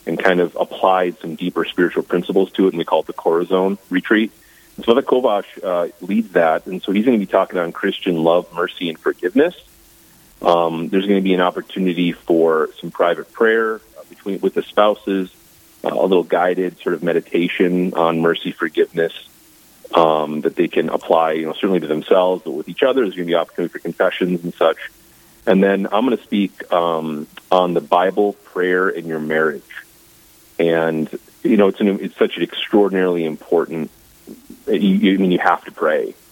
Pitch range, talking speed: 85-105 Hz, 195 wpm